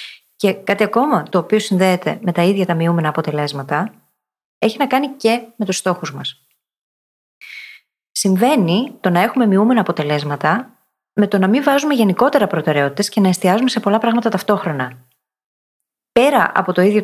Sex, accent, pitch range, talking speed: female, native, 165-215 Hz, 155 wpm